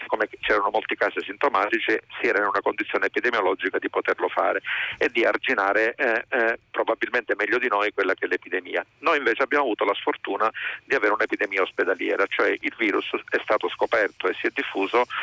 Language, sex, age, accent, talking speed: Italian, male, 40-59, native, 185 wpm